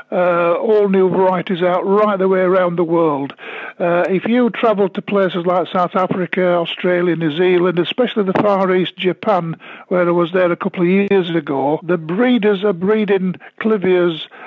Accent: British